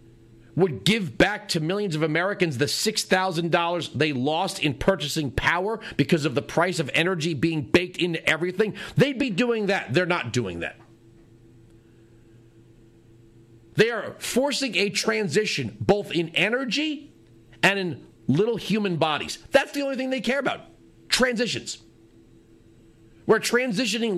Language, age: English, 40-59